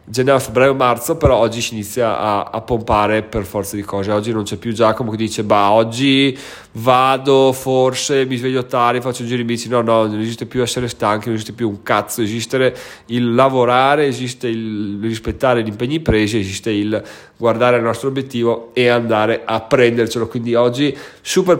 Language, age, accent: Italian, 30-49, native